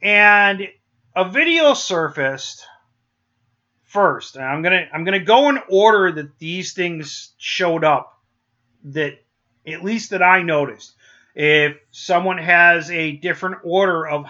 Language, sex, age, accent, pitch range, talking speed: English, male, 30-49, American, 140-190 Hz, 125 wpm